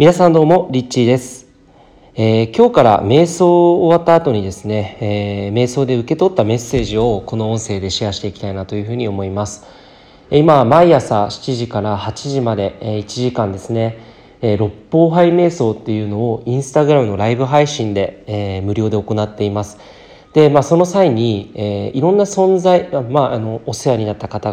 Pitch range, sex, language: 105-145 Hz, male, Japanese